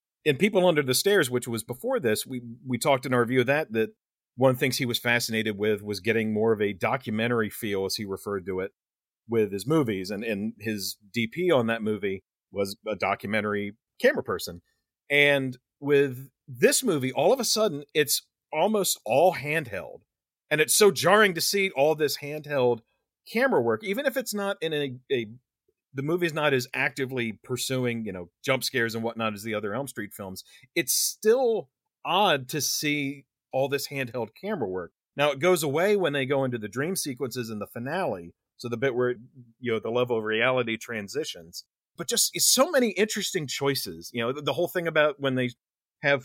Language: English